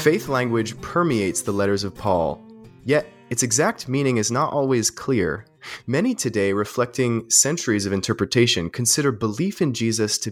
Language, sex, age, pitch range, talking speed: English, male, 30-49, 105-135 Hz, 150 wpm